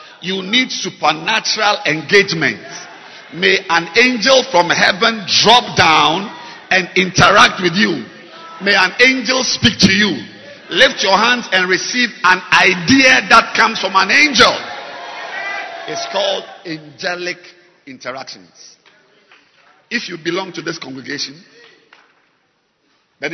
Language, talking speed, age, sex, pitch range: English, 115 wpm, 50-69, male, 175-230 Hz